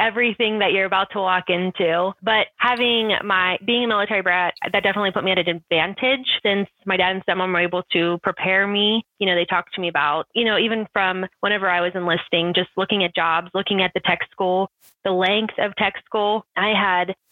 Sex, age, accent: female, 20-39, American